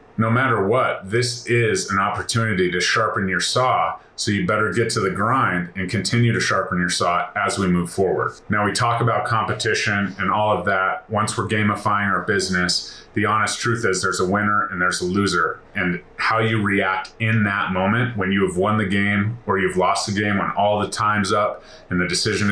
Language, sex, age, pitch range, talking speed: English, male, 30-49, 95-115 Hz, 210 wpm